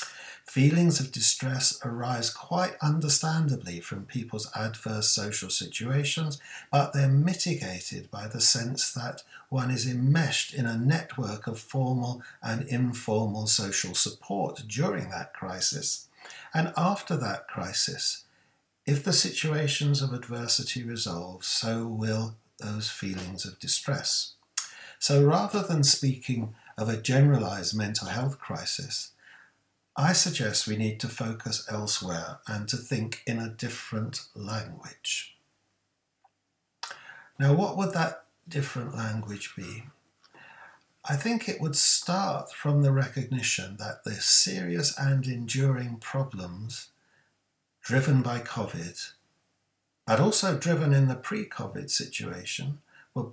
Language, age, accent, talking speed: English, 50-69, British, 120 wpm